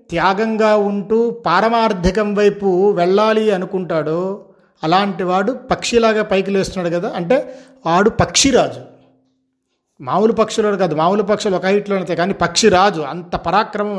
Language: Telugu